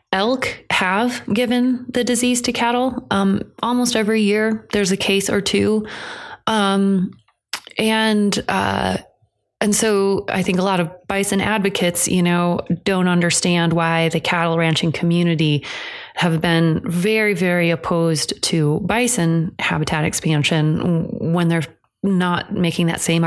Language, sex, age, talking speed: English, female, 20-39, 135 wpm